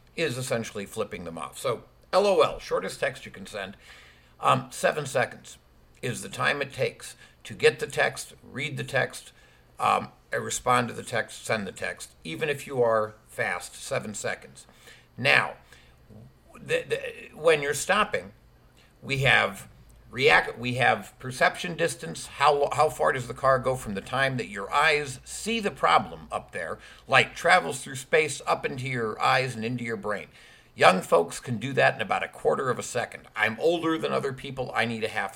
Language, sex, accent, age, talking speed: English, male, American, 60-79, 180 wpm